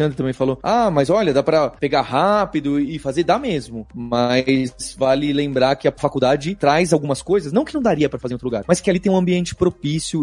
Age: 30-49